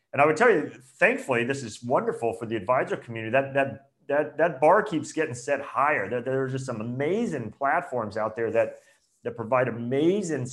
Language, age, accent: English, 30-49, American